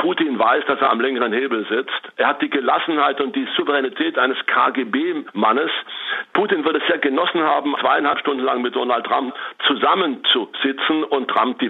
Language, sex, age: German, male, 60-79